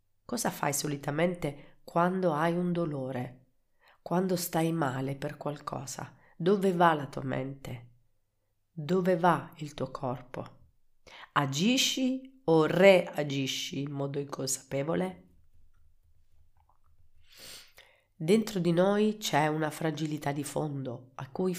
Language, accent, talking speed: Italian, native, 105 wpm